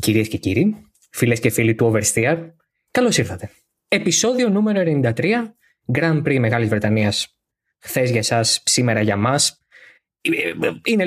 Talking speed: 130 wpm